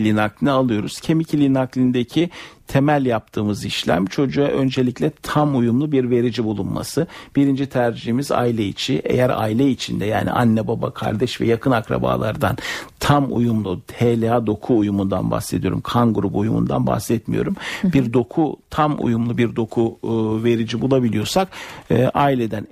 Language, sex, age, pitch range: Turkish, male, 60-79, 110-135 Hz